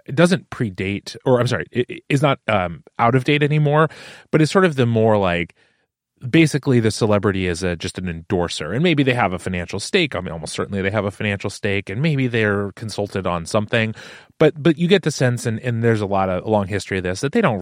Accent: American